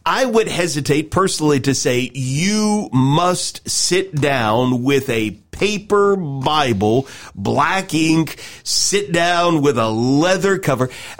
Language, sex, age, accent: English, male, 40-59, American